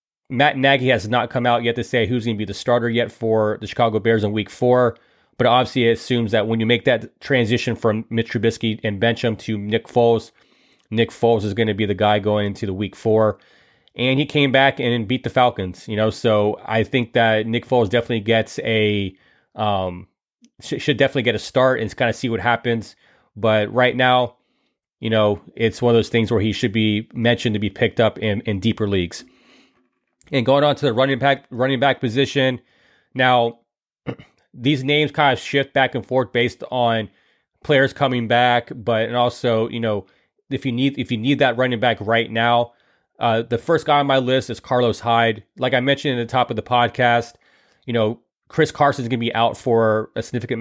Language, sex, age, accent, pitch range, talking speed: English, male, 30-49, American, 110-130 Hz, 210 wpm